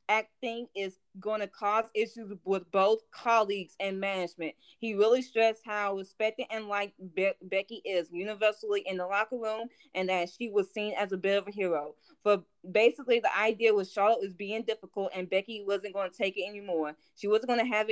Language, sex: English, female